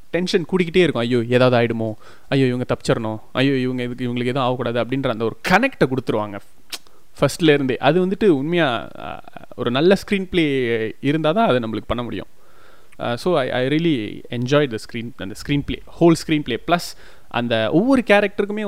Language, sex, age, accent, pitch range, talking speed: Tamil, male, 20-39, native, 115-160 Hz, 185 wpm